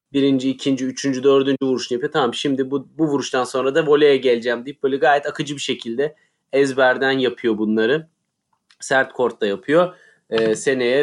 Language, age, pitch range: Turkish, 30-49, 125-150 Hz